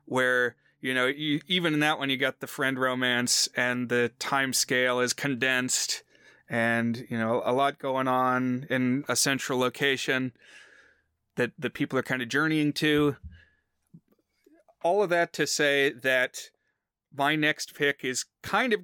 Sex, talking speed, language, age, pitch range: male, 155 wpm, English, 30-49, 130-155 Hz